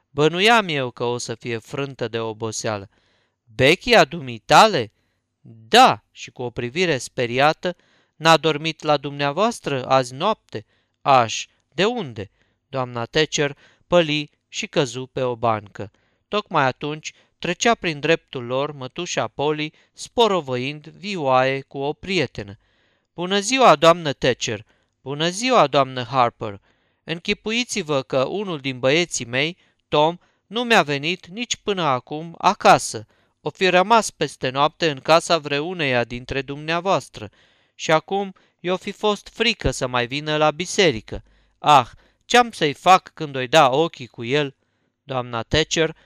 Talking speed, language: 135 wpm, Romanian